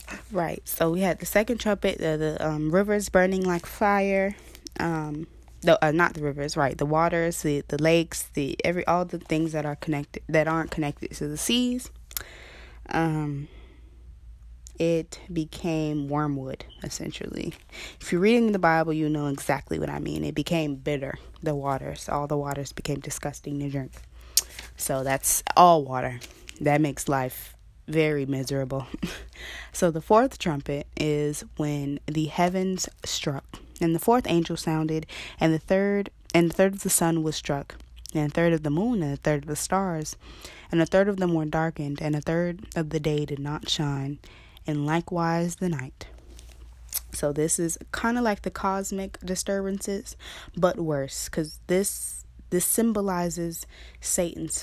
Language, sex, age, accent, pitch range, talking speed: English, female, 20-39, American, 140-175 Hz, 165 wpm